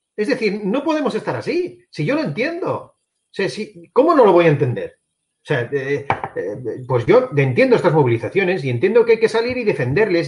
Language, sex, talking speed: Spanish, male, 210 wpm